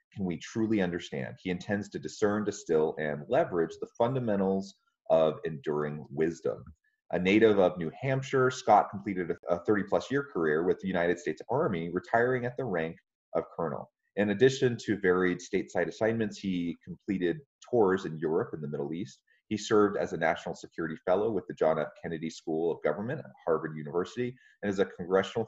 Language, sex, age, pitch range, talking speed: English, male, 30-49, 85-115 Hz, 175 wpm